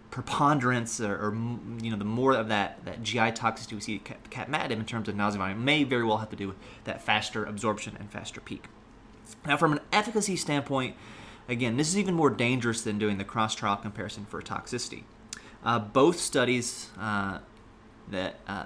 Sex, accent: male, American